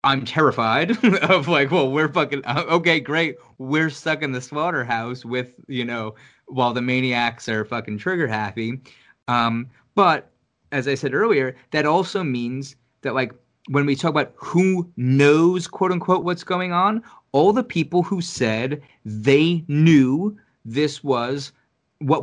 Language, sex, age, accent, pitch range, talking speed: English, male, 30-49, American, 130-180 Hz, 150 wpm